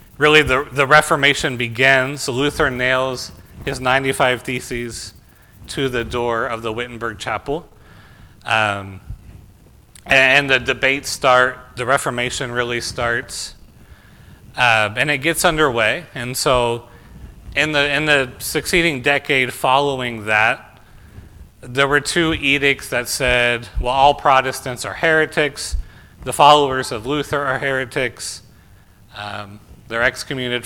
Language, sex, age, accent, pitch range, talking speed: English, male, 30-49, American, 115-145 Hz, 120 wpm